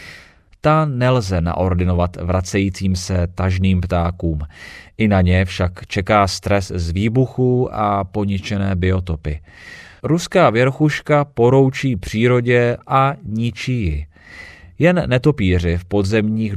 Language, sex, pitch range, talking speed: Czech, male, 90-120 Hz, 100 wpm